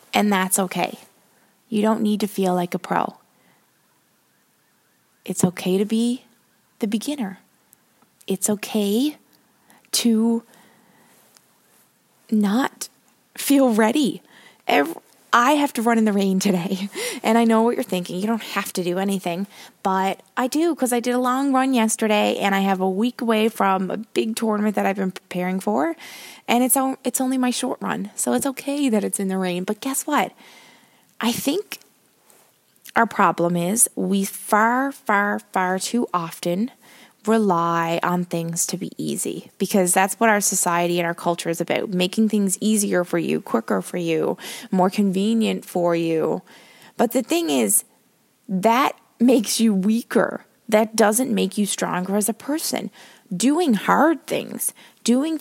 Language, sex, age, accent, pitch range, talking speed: English, female, 20-39, American, 195-240 Hz, 160 wpm